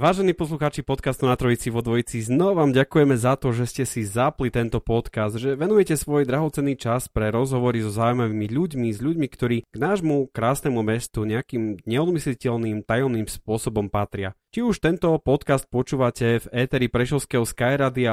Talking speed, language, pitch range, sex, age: 160 wpm, Slovak, 110-135 Hz, male, 30-49